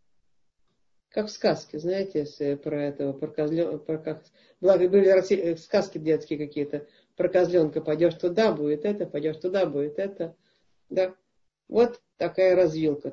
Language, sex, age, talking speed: Russian, female, 50-69, 105 wpm